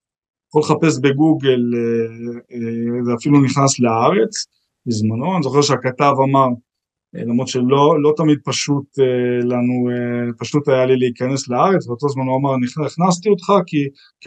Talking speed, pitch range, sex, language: 125 wpm, 130-180 Hz, male, Hebrew